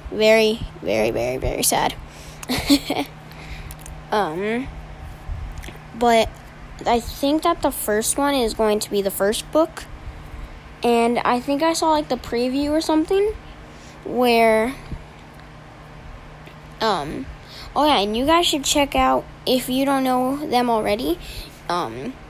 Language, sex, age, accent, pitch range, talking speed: English, female, 10-29, American, 220-280 Hz, 125 wpm